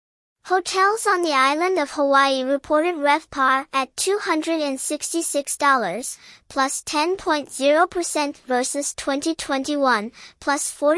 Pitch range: 275-325 Hz